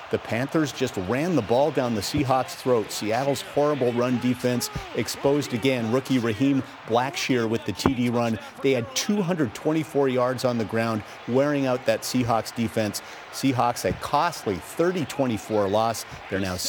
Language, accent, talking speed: English, American, 150 wpm